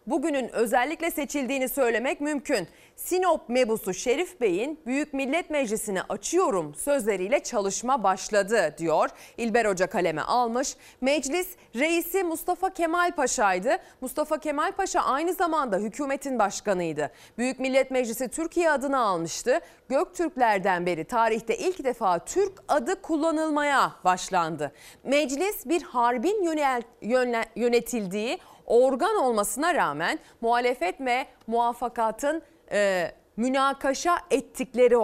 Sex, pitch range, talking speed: female, 220-305 Hz, 105 wpm